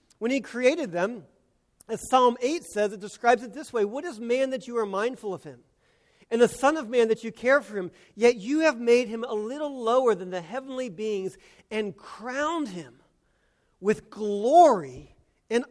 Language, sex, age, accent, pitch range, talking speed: English, male, 40-59, American, 210-265 Hz, 190 wpm